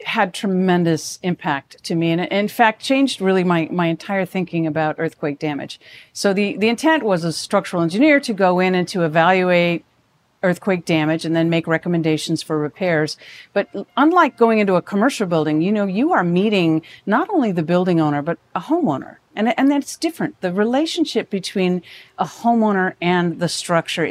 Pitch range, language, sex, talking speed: 160-200 Hz, English, female, 175 wpm